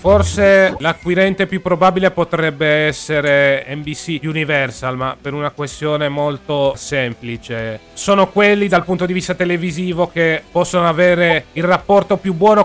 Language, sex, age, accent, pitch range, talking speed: Italian, male, 30-49, native, 145-180 Hz, 135 wpm